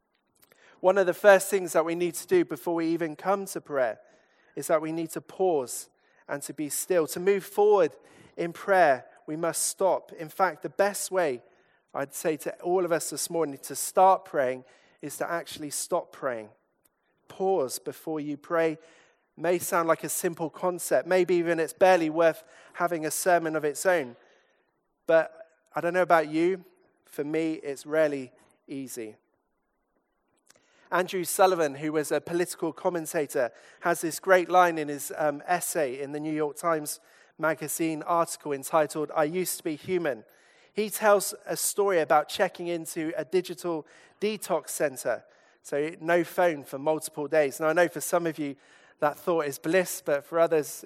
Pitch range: 150-180 Hz